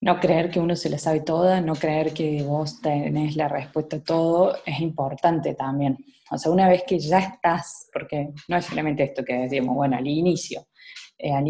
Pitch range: 145-170 Hz